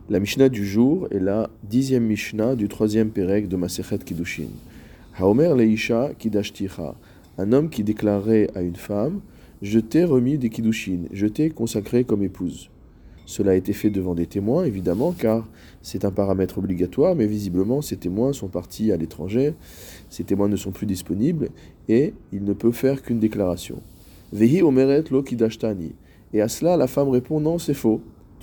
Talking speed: 180 wpm